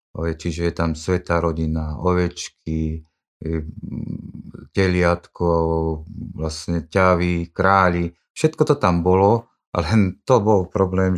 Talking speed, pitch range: 95 wpm, 80-90 Hz